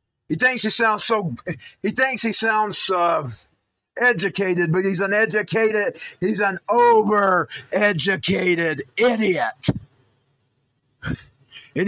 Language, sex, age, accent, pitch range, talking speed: English, male, 50-69, American, 135-200 Hz, 100 wpm